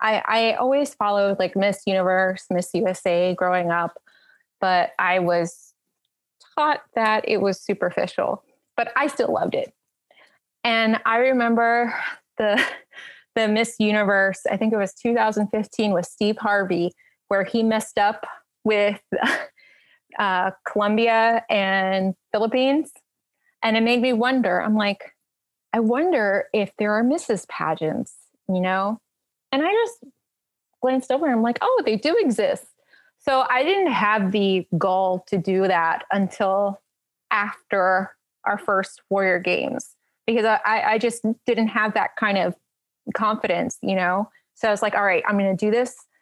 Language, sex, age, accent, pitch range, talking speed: English, female, 20-39, American, 195-240 Hz, 150 wpm